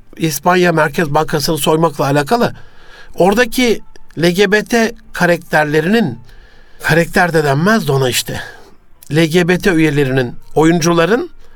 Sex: male